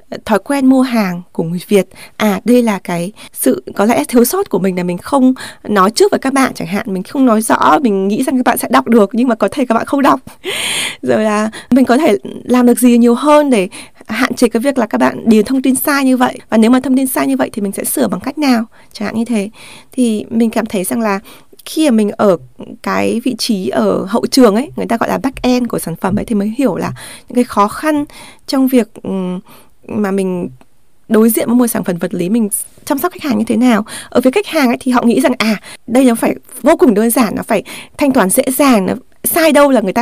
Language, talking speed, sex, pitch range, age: Vietnamese, 260 wpm, female, 210-260 Hz, 20-39